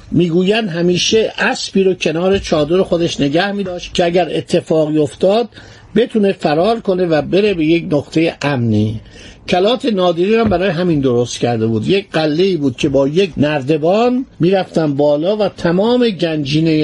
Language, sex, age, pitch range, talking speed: Persian, male, 50-69, 145-190 Hz, 150 wpm